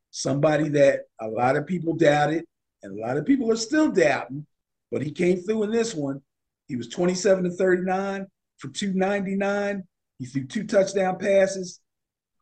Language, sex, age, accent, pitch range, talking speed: English, male, 50-69, American, 125-185 Hz, 160 wpm